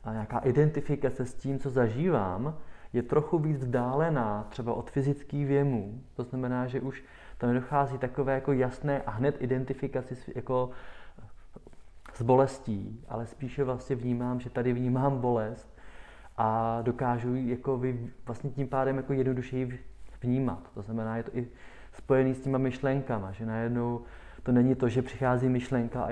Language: Czech